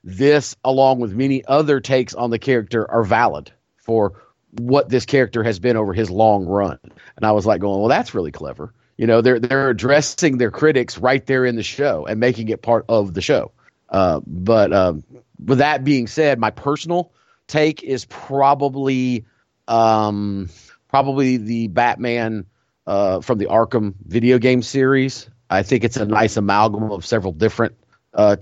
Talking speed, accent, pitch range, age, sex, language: 175 wpm, American, 100-125 Hz, 40-59, male, English